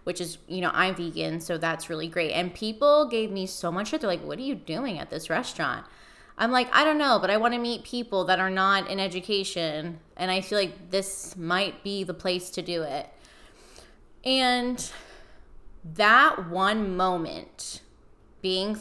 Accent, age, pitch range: American, 10-29, 180-220 Hz